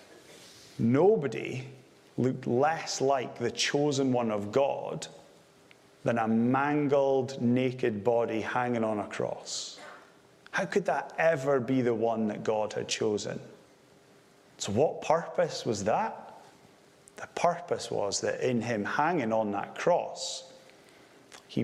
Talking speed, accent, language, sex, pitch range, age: 125 wpm, British, English, male, 110-145 Hz, 30-49